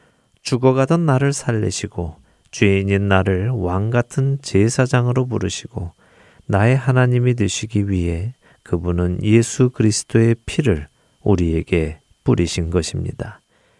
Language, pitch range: Korean, 90-125 Hz